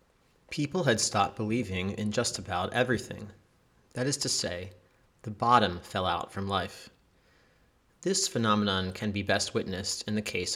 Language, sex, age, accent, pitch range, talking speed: English, male, 30-49, American, 95-120 Hz, 155 wpm